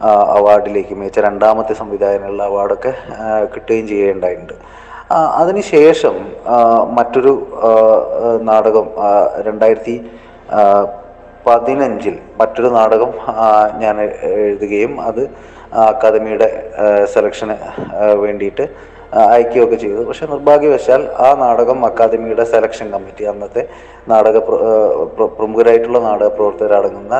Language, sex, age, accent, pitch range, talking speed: Malayalam, male, 20-39, native, 110-145 Hz, 75 wpm